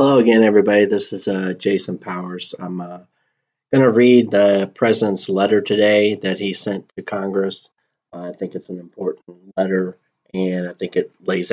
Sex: male